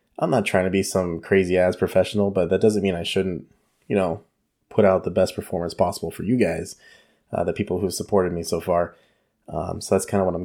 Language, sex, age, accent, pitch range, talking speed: English, male, 20-39, American, 95-105 Hz, 235 wpm